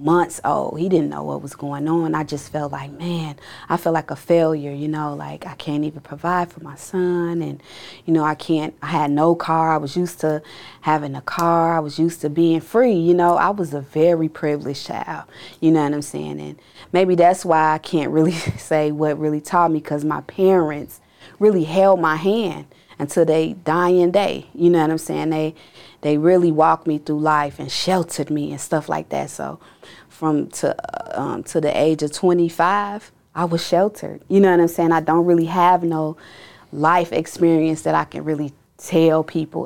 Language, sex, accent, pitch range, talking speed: English, female, American, 150-170 Hz, 205 wpm